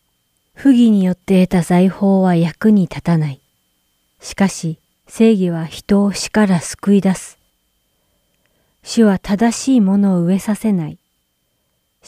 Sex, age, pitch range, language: female, 40-59, 165-215 Hz, Japanese